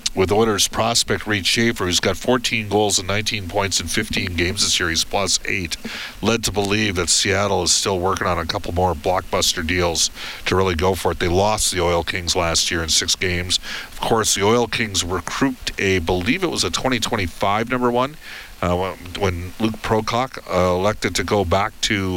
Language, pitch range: English, 90-110 Hz